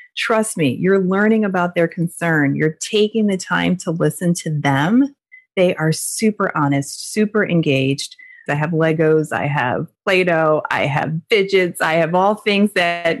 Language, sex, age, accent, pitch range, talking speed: English, female, 30-49, American, 165-200 Hz, 160 wpm